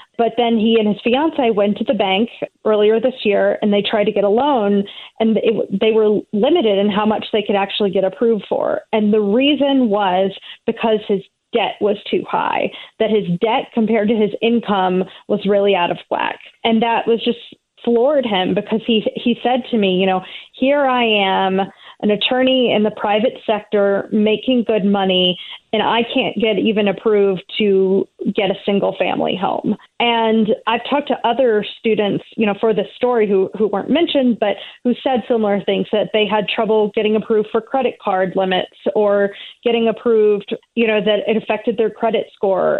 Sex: female